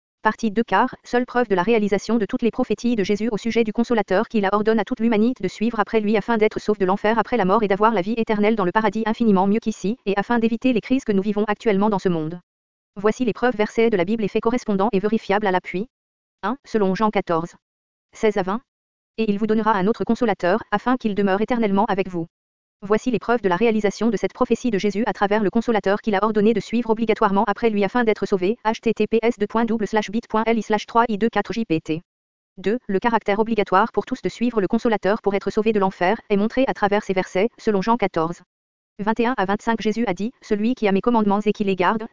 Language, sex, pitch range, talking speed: English, female, 195-225 Hz, 240 wpm